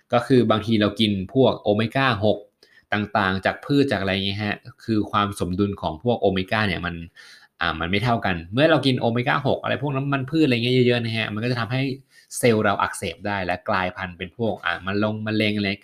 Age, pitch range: 20-39, 95-120 Hz